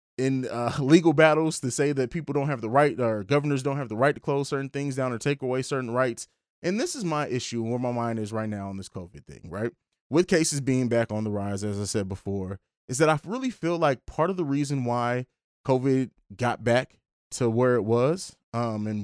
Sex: male